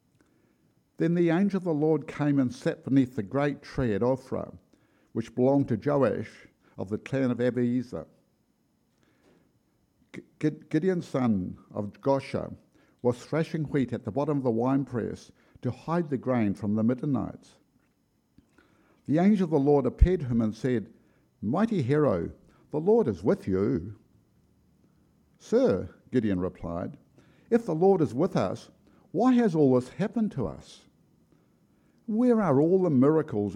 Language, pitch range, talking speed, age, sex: English, 120-160 Hz, 145 wpm, 60-79, male